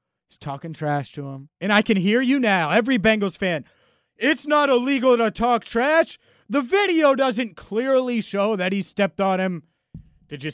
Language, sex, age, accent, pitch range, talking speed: English, male, 30-49, American, 145-200 Hz, 180 wpm